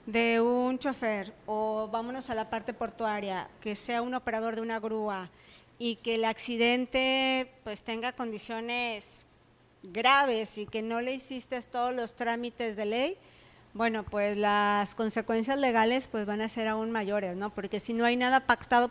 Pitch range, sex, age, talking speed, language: 230-275 Hz, female, 40-59, 165 wpm, Spanish